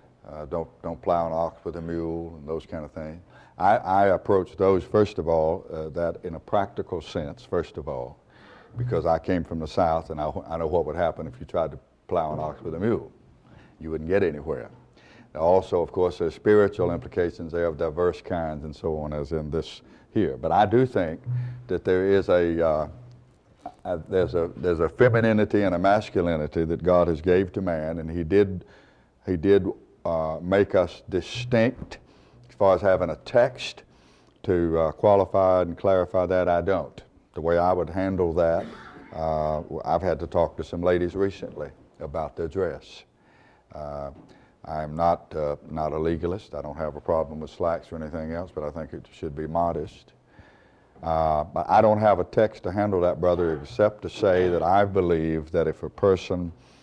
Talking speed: 195 wpm